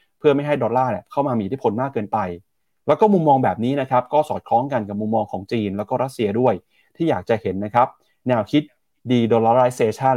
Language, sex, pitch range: Thai, male, 105-145 Hz